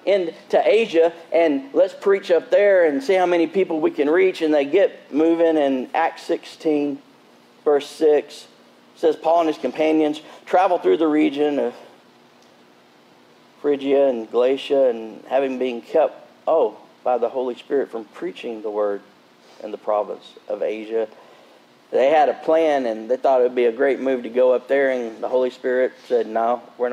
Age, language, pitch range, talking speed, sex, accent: 50-69, English, 110-175 Hz, 175 wpm, male, American